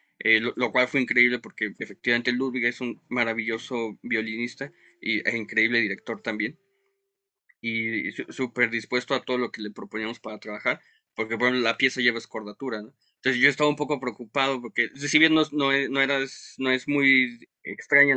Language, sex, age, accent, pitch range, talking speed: Spanish, male, 20-39, Mexican, 115-135 Hz, 180 wpm